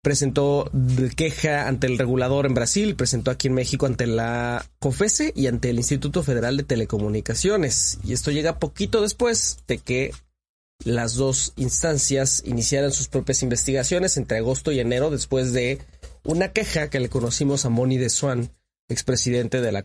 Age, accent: 30-49, Mexican